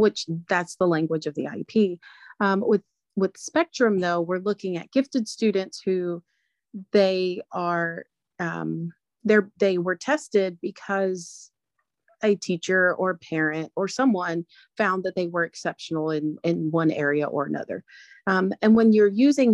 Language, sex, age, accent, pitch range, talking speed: English, female, 30-49, American, 170-215 Hz, 150 wpm